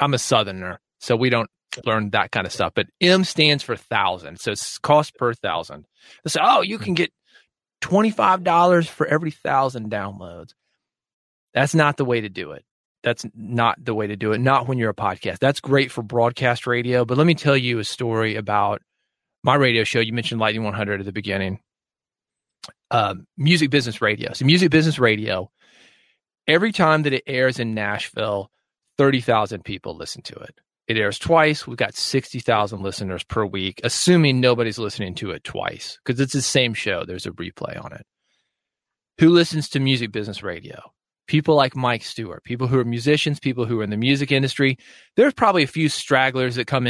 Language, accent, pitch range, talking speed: English, American, 105-135 Hz, 185 wpm